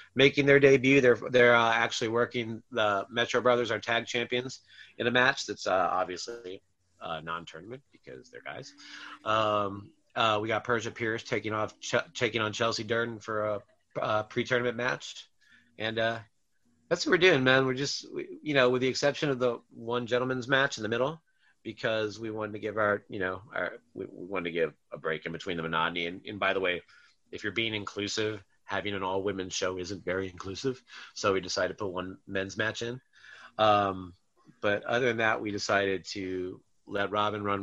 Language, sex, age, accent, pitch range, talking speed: English, male, 30-49, American, 95-120 Hz, 195 wpm